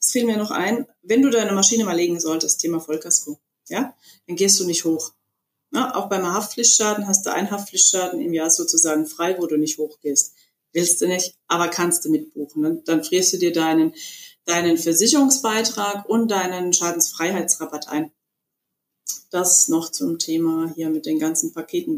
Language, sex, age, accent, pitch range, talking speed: German, female, 30-49, German, 170-225 Hz, 175 wpm